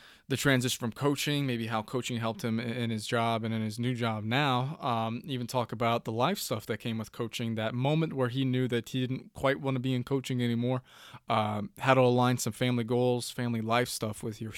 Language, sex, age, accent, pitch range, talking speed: English, male, 20-39, American, 115-135 Hz, 230 wpm